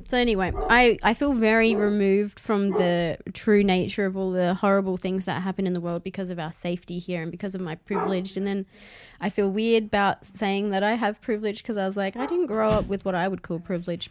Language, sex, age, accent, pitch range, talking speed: English, female, 20-39, Australian, 175-210 Hz, 240 wpm